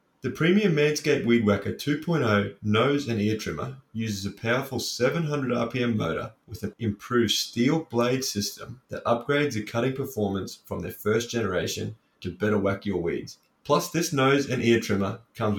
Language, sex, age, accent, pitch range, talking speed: English, male, 20-39, Australian, 105-135 Hz, 165 wpm